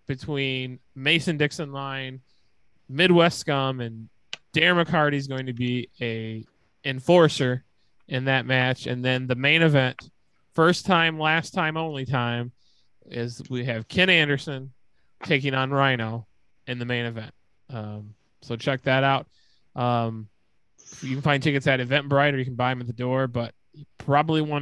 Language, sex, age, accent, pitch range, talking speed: English, male, 20-39, American, 125-150 Hz, 160 wpm